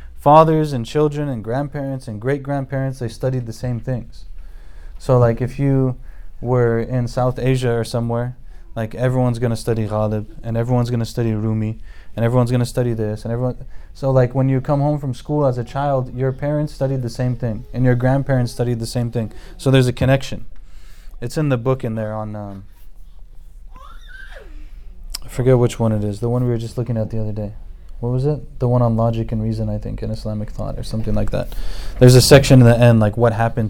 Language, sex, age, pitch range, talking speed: English, male, 20-39, 110-125 Hz, 215 wpm